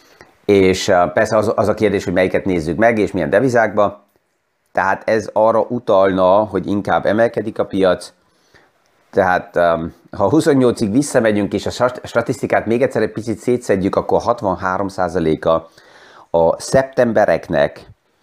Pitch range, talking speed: 90-115 Hz, 130 wpm